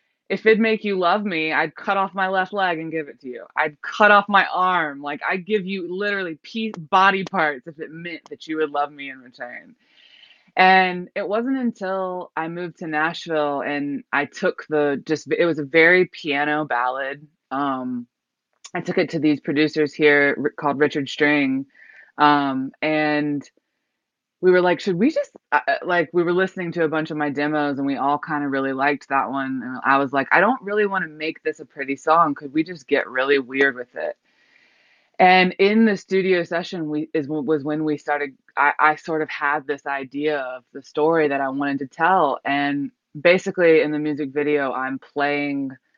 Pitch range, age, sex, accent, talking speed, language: 145-185 Hz, 20-39, female, American, 200 wpm, English